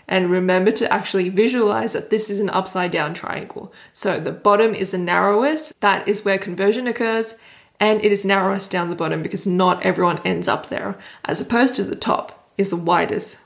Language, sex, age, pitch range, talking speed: English, female, 20-39, 180-210 Hz, 195 wpm